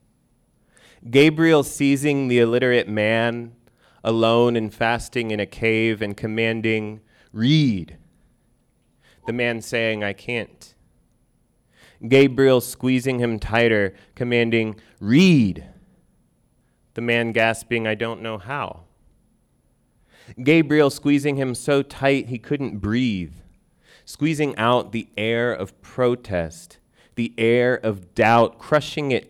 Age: 30-49